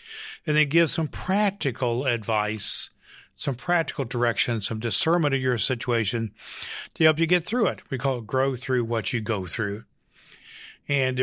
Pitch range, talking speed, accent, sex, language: 110-135 Hz, 160 wpm, American, male, English